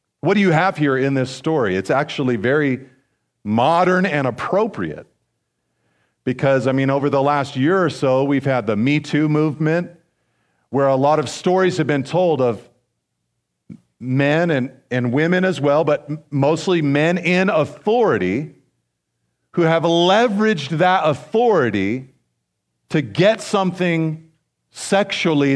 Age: 50-69